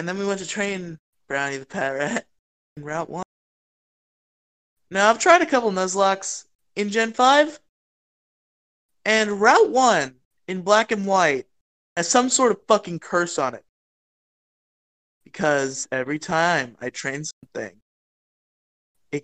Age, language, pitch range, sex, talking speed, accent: 20-39, English, 125-170 Hz, male, 135 wpm, American